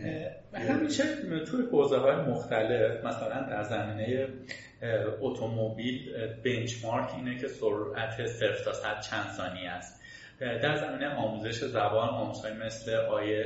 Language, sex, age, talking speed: Persian, male, 30-49, 120 wpm